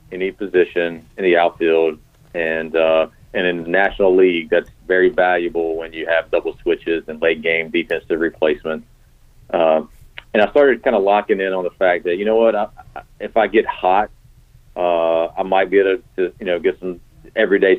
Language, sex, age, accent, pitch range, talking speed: English, male, 40-59, American, 85-95 Hz, 190 wpm